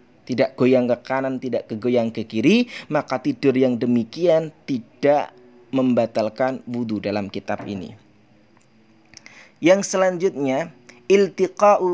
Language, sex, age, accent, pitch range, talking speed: Indonesian, male, 20-39, native, 120-150 Hz, 105 wpm